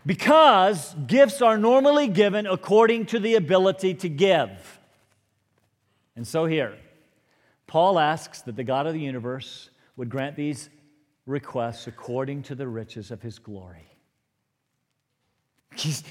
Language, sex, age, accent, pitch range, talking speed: English, male, 50-69, American, 125-200 Hz, 125 wpm